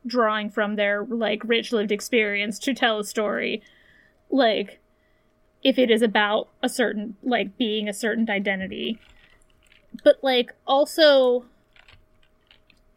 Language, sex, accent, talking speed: English, female, American, 120 wpm